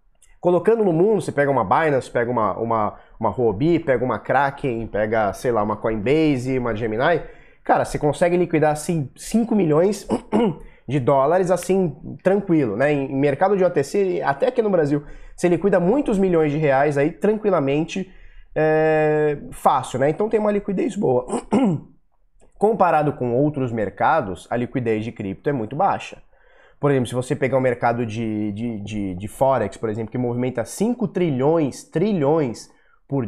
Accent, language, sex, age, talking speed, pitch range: Brazilian, Portuguese, male, 20-39, 155 wpm, 125-175 Hz